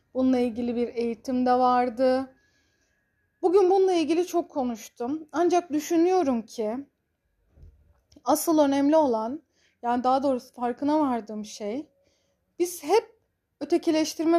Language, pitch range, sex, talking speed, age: Turkish, 240-305 Hz, female, 110 wpm, 30-49